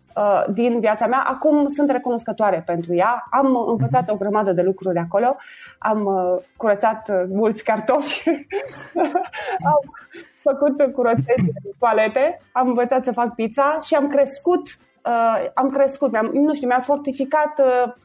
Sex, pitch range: female, 195-265 Hz